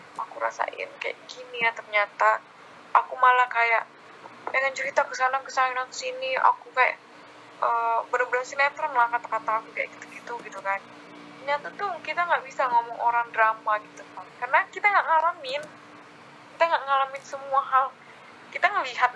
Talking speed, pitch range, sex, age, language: 145 wpm, 220-285 Hz, female, 10-29, Indonesian